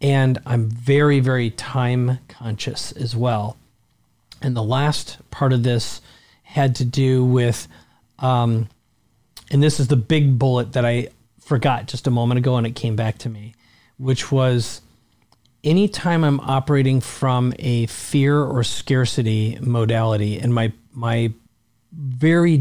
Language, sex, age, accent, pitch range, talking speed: English, male, 40-59, American, 115-135 Hz, 140 wpm